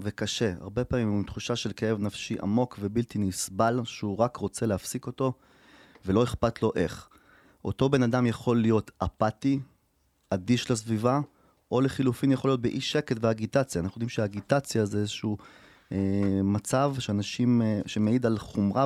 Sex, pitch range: male, 105-125 Hz